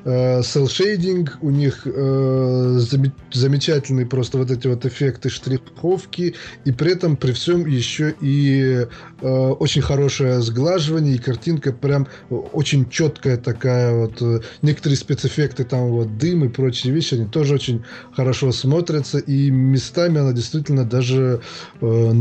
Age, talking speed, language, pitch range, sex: 20-39, 130 wpm, Russian, 125-145 Hz, male